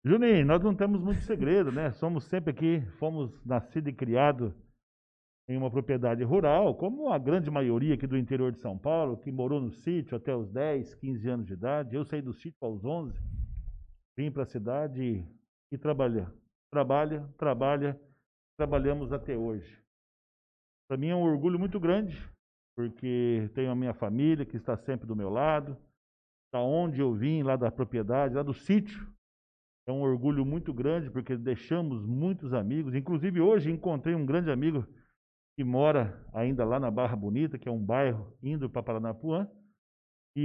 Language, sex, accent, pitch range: Portuguese, male, Brazilian, 115-155 Hz